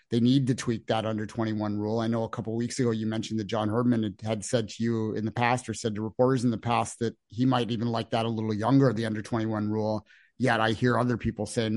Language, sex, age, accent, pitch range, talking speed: English, male, 30-49, American, 110-140 Hz, 270 wpm